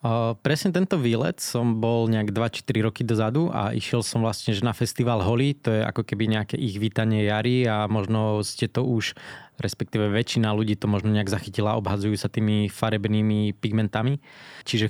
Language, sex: Slovak, male